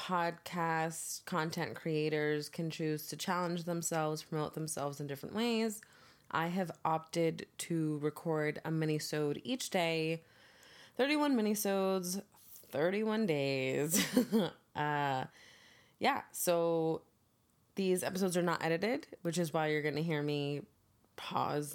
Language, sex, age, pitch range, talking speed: English, female, 20-39, 150-190 Hz, 115 wpm